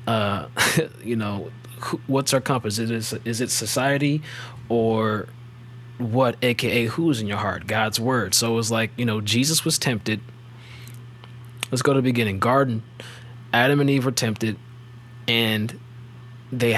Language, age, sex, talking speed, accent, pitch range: English, 20-39, male, 150 wpm, American, 115-125 Hz